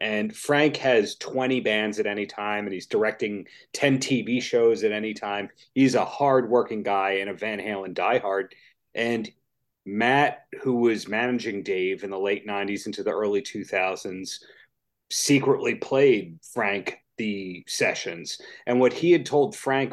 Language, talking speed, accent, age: English, 155 wpm, American, 30-49